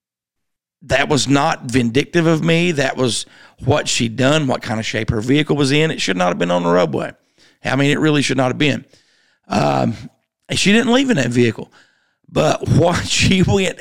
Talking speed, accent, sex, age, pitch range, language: 200 wpm, American, male, 50-69, 120-165 Hz, English